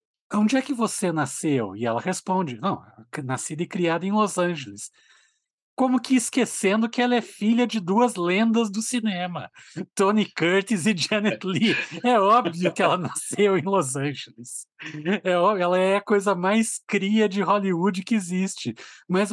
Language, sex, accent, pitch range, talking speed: Portuguese, male, Brazilian, 165-210 Hz, 160 wpm